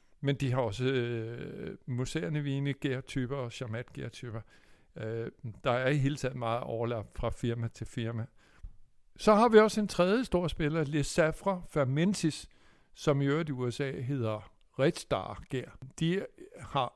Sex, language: male, Danish